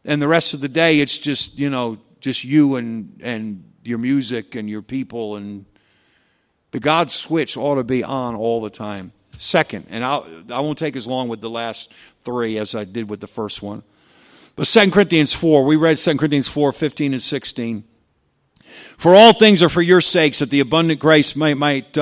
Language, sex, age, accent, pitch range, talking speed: English, male, 50-69, American, 130-200 Hz, 200 wpm